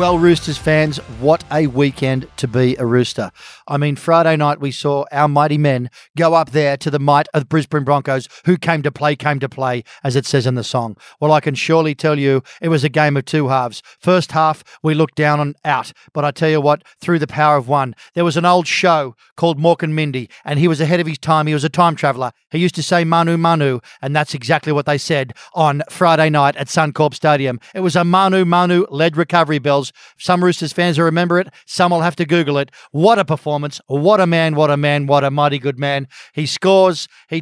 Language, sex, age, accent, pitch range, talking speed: English, male, 40-59, Australian, 140-165 Hz, 235 wpm